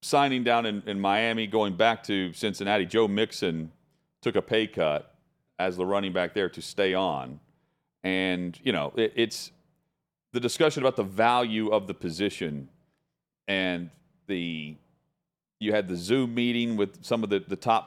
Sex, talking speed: male, 165 wpm